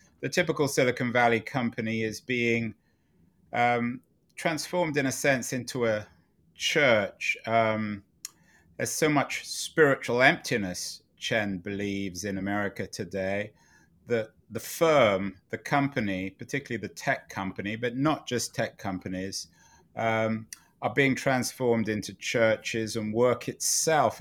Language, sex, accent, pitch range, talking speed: English, male, British, 95-120 Hz, 120 wpm